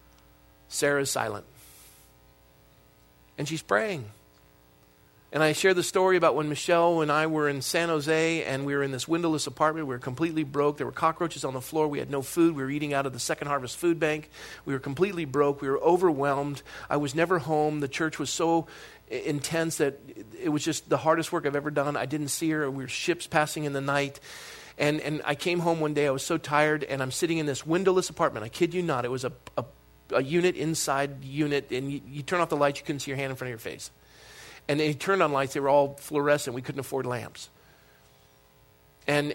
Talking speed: 225 wpm